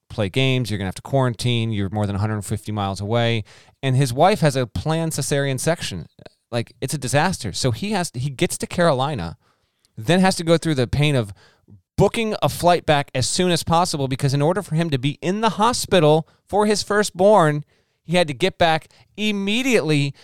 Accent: American